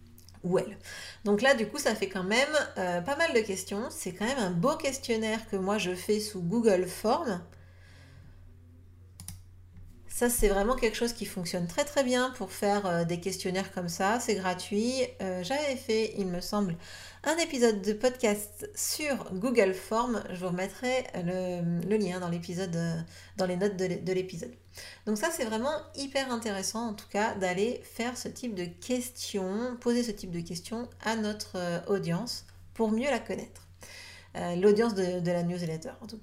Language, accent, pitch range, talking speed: French, French, 180-235 Hz, 170 wpm